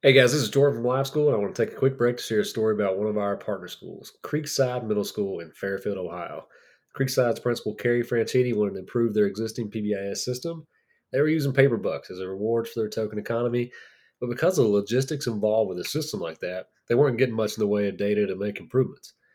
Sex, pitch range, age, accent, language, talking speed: male, 105-130 Hz, 30-49, American, English, 240 wpm